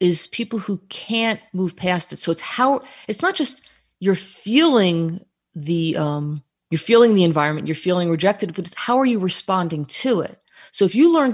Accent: American